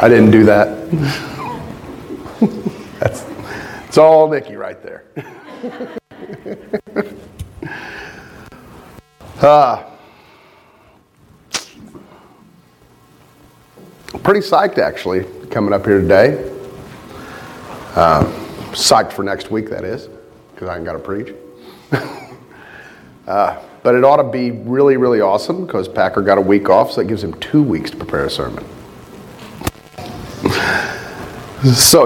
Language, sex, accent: English, male, American